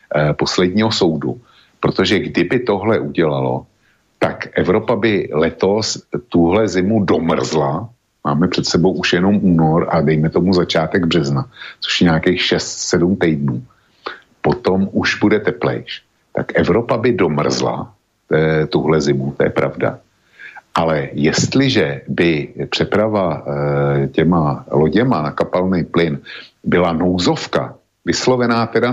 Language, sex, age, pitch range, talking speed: Slovak, male, 60-79, 80-105 Hz, 115 wpm